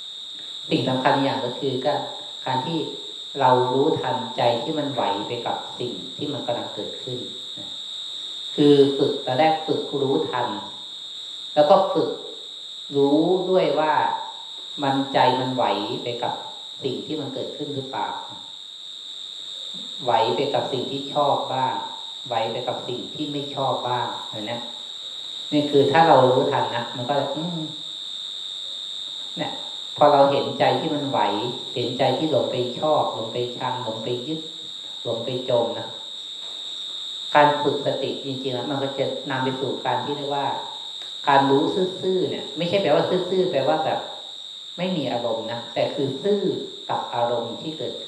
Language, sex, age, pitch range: Thai, female, 20-39, 135-185 Hz